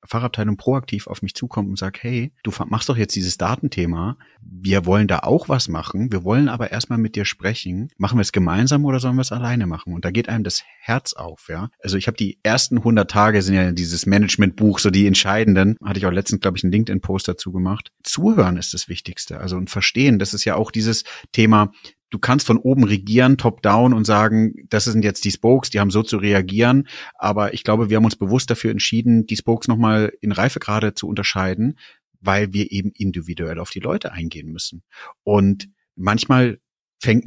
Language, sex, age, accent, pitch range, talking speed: German, male, 30-49, German, 100-120 Hz, 210 wpm